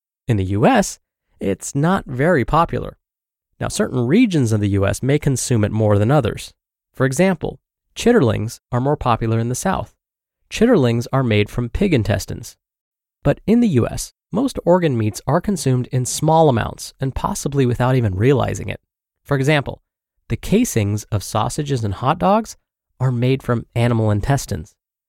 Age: 20-39